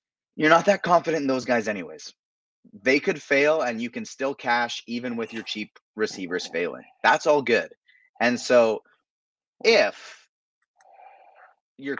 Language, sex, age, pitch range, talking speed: English, male, 20-39, 100-140 Hz, 145 wpm